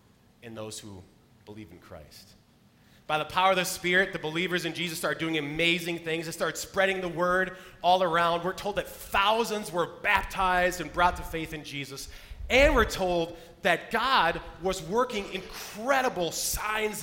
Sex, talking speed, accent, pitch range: male, 170 wpm, American, 145-185 Hz